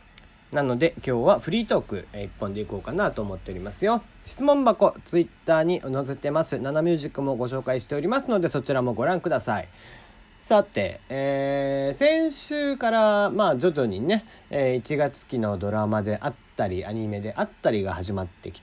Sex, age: male, 40-59